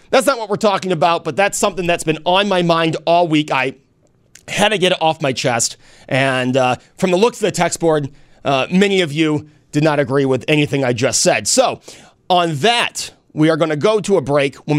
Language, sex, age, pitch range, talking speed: English, male, 30-49, 135-185 Hz, 230 wpm